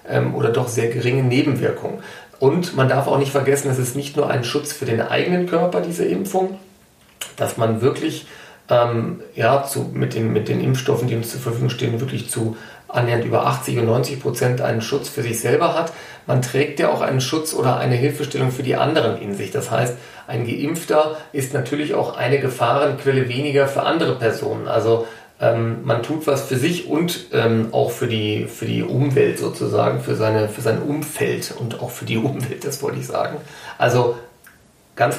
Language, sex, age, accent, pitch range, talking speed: German, male, 40-59, German, 115-140 Hz, 185 wpm